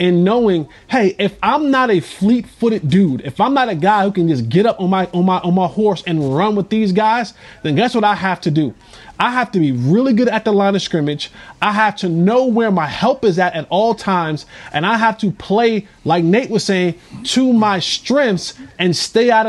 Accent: American